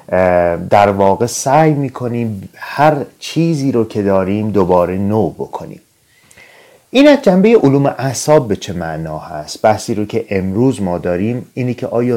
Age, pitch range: 30-49, 95-130 Hz